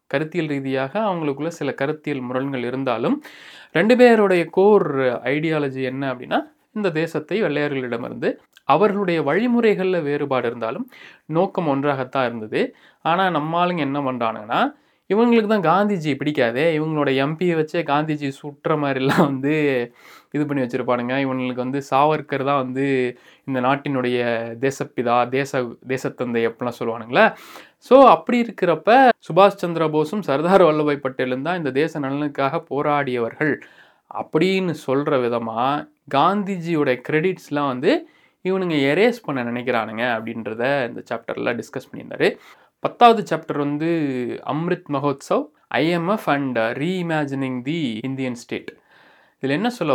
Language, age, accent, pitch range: Tamil, 20-39, native, 130-175 Hz